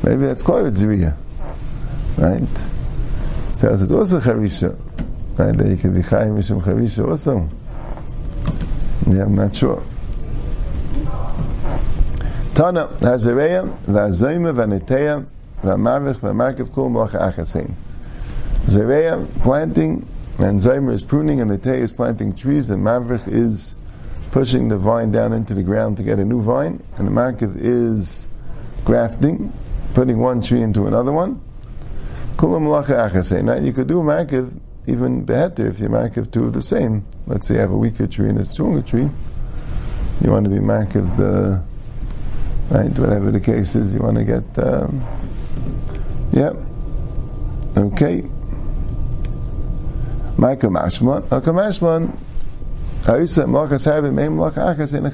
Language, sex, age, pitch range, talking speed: English, male, 50-69, 95-130 Hz, 130 wpm